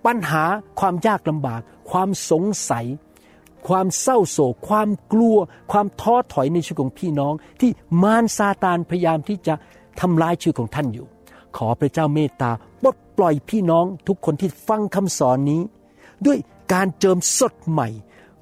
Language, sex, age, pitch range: Thai, male, 60-79, 135-185 Hz